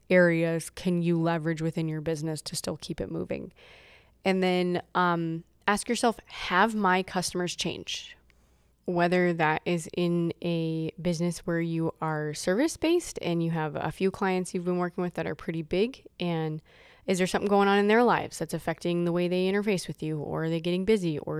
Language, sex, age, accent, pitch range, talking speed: English, female, 20-39, American, 165-200 Hz, 190 wpm